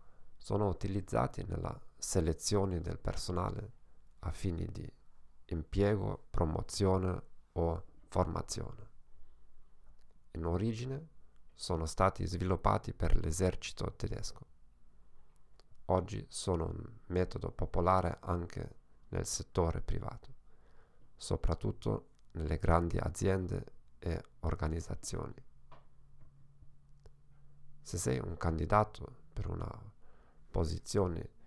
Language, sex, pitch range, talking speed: Italian, male, 80-105 Hz, 80 wpm